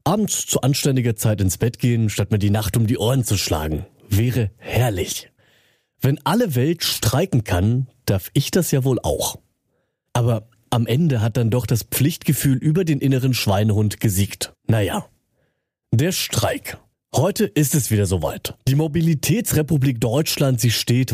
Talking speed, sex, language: 155 wpm, male, German